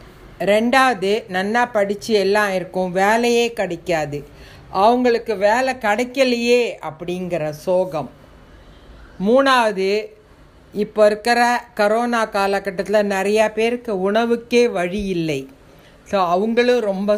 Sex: female